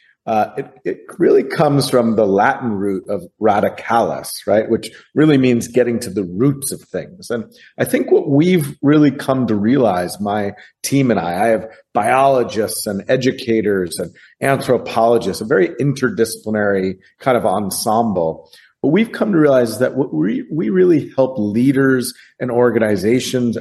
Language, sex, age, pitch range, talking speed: English, male, 40-59, 105-140 Hz, 160 wpm